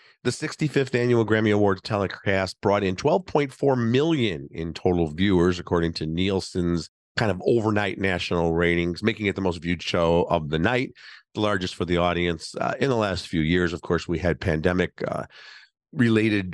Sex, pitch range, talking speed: male, 90-110 Hz, 165 wpm